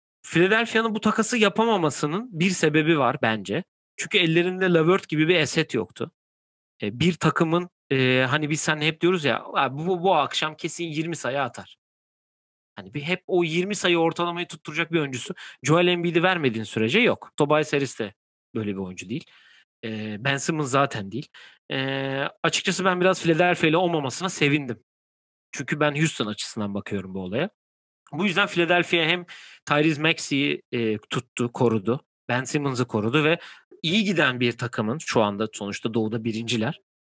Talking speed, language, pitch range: 150 wpm, Turkish, 120-170 Hz